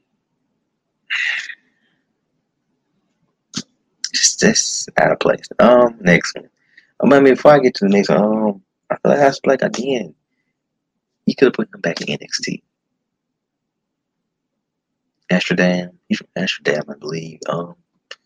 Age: 20-39